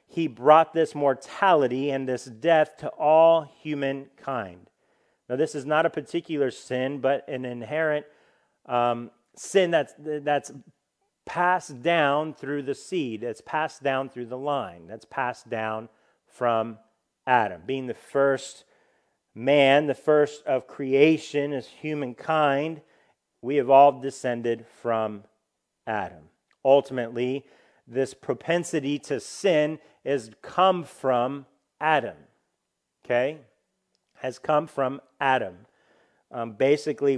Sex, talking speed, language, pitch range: male, 115 wpm, English, 125-150 Hz